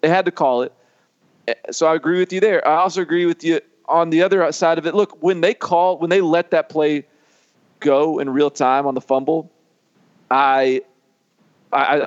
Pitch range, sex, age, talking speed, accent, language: 140-180 Hz, male, 40-59, 200 wpm, American, English